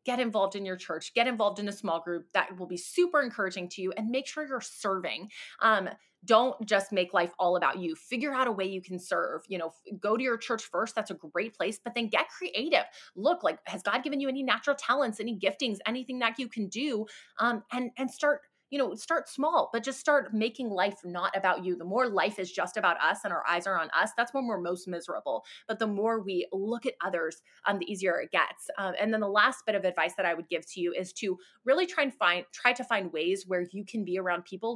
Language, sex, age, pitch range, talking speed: English, female, 20-39, 185-250 Hz, 250 wpm